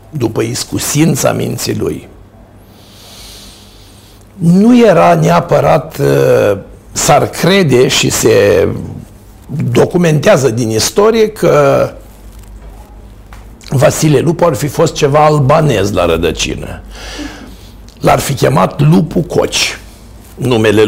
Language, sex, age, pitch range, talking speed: Romanian, male, 60-79, 105-160 Hz, 85 wpm